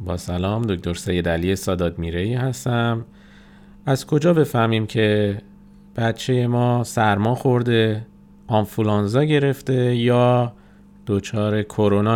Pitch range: 95-120 Hz